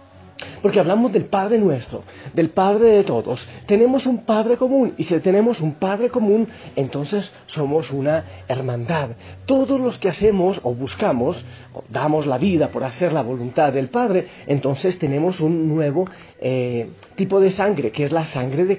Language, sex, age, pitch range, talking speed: Spanish, male, 40-59, 135-205 Hz, 165 wpm